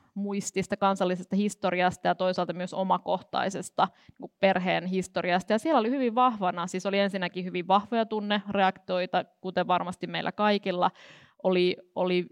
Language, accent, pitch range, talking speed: Finnish, native, 180-195 Hz, 120 wpm